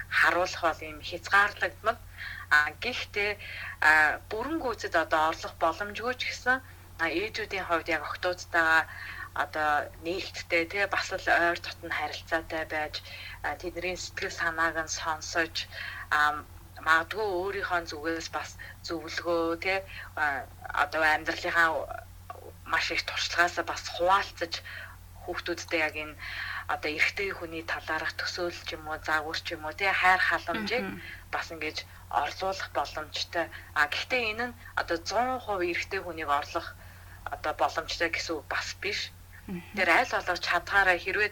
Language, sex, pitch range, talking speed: English, female, 155-190 Hz, 105 wpm